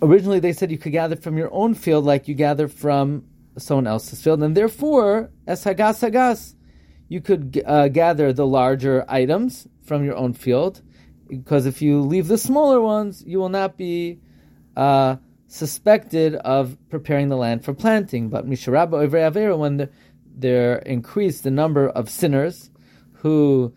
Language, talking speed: English, 155 wpm